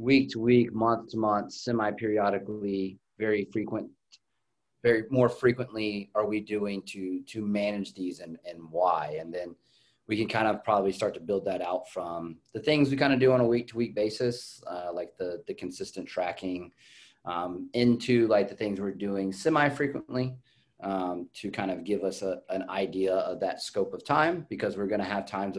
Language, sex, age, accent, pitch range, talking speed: English, male, 30-49, American, 90-120 Hz, 195 wpm